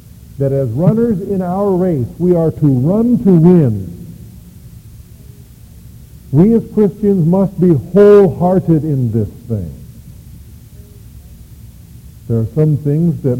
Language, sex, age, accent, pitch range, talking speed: English, male, 50-69, American, 120-175 Hz, 115 wpm